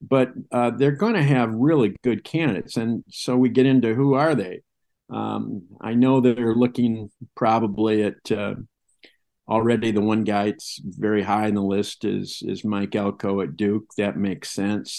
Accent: American